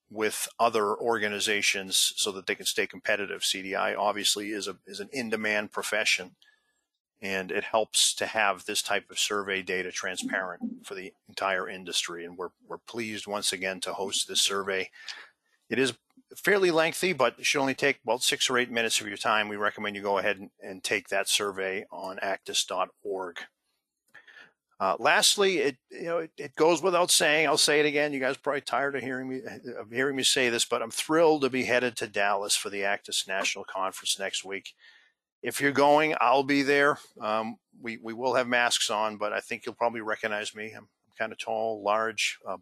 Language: English